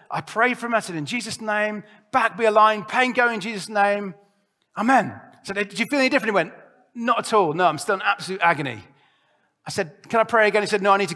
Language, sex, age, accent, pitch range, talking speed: English, male, 40-59, British, 180-240 Hz, 260 wpm